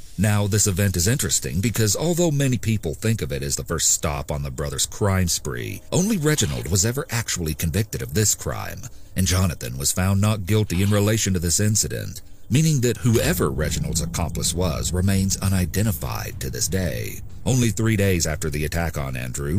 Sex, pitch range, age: male, 85-115 Hz, 40-59